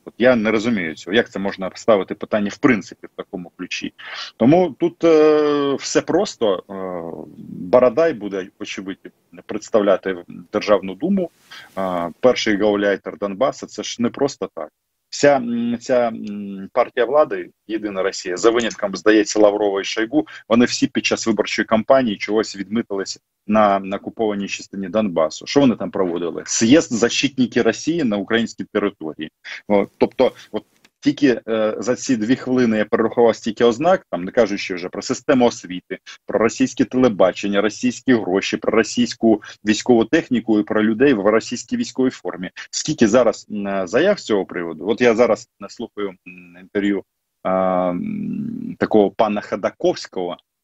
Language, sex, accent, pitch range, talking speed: Russian, male, native, 100-130 Hz, 140 wpm